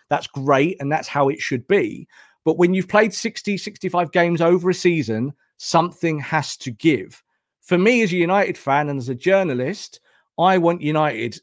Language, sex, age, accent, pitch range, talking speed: English, male, 40-59, British, 135-180 Hz, 185 wpm